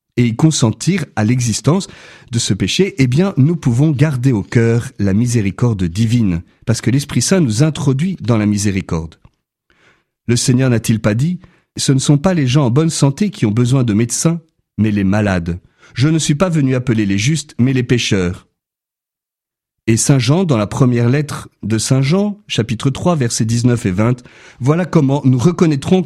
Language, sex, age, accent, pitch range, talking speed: French, male, 40-59, French, 110-150 Hz, 185 wpm